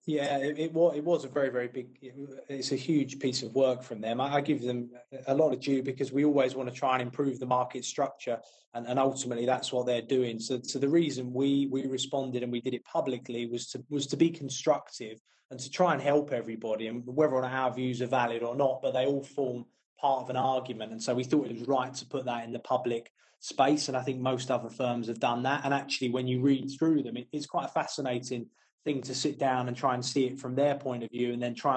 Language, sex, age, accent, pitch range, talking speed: English, male, 20-39, British, 125-145 Hz, 255 wpm